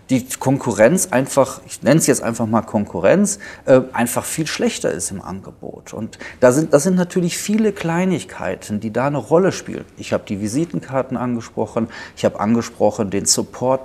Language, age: German, 40-59